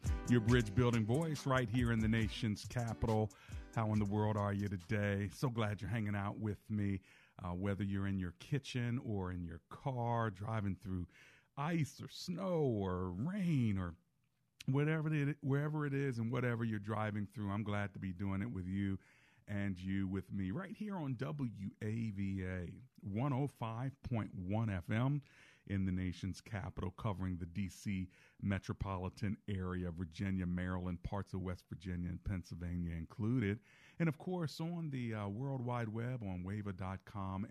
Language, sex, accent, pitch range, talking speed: English, male, American, 95-120 Hz, 160 wpm